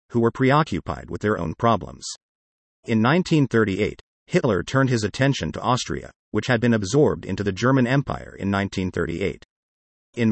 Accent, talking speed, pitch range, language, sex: American, 150 wpm, 95-125 Hz, English, male